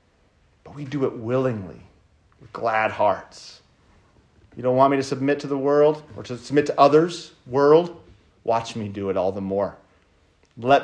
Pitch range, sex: 115-155 Hz, male